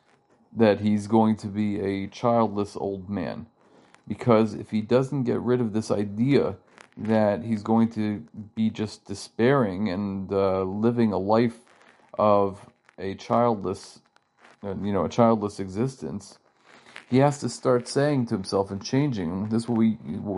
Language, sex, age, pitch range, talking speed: English, male, 40-59, 100-115 Hz, 155 wpm